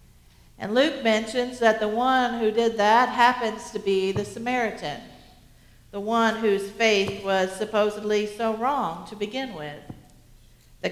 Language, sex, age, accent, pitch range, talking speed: English, female, 50-69, American, 195-245 Hz, 145 wpm